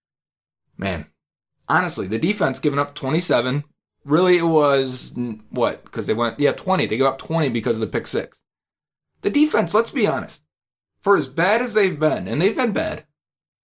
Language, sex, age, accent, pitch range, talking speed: English, male, 30-49, American, 120-185 Hz, 175 wpm